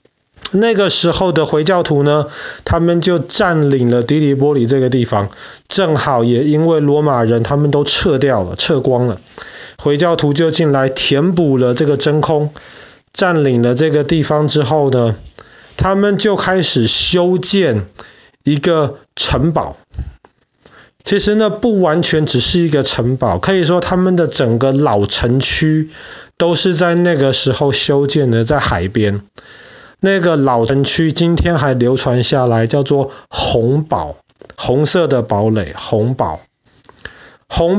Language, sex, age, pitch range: Chinese, male, 30-49, 125-170 Hz